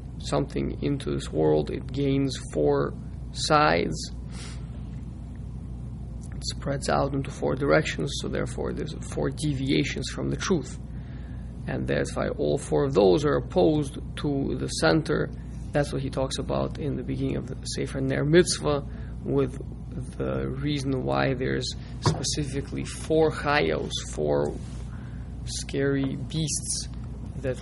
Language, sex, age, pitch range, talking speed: English, male, 20-39, 95-155 Hz, 130 wpm